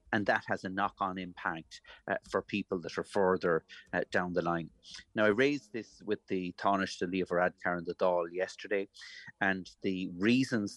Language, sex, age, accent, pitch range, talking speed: English, male, 30-49, Irish, 90-100 Hz, 185 wpm